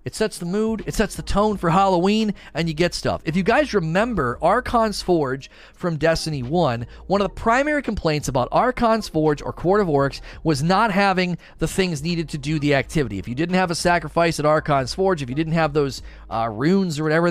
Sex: male